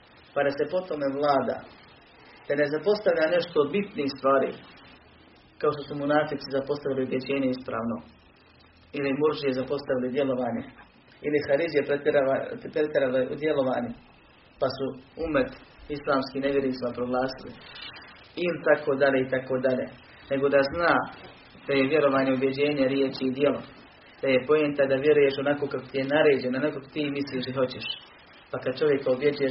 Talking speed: 145 wpm